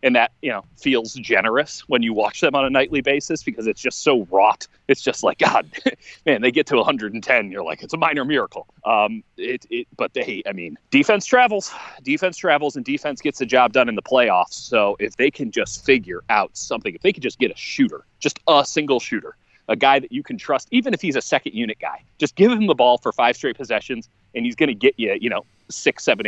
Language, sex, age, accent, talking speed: English, male, 30-49, American, 235 wpm